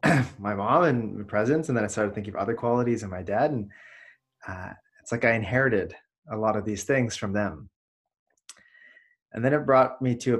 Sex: male